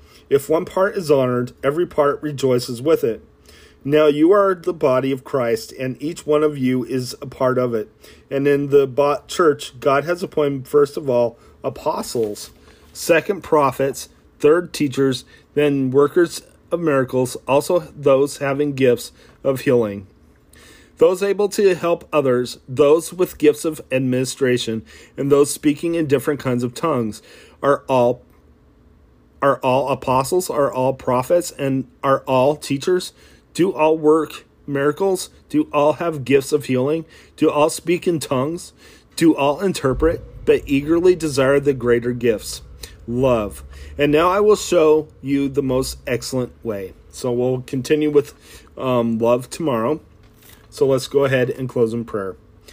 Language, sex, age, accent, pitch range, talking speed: English, male, 40-59, American, 125-150 Hz, 150 wpm